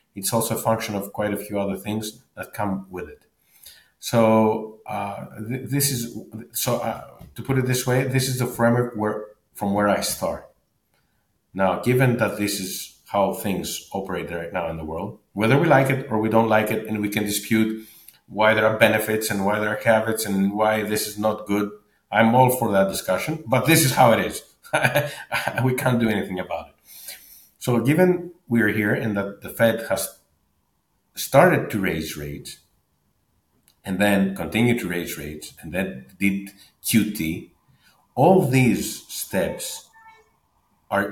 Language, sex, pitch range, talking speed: English, male, 95-115 Hz, 175 wpm